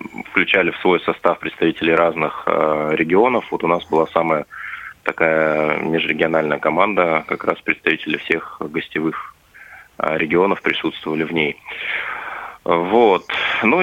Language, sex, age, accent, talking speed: Russian, male, 20-39, native, 120 wpm